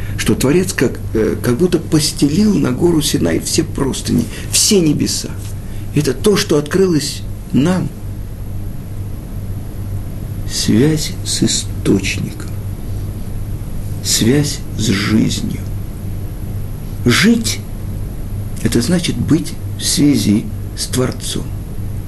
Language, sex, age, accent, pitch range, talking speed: Russian, male, 50-69, native, 100-150 Hz, 90 wpm